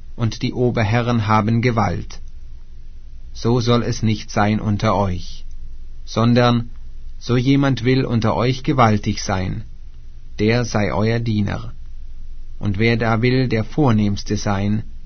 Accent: German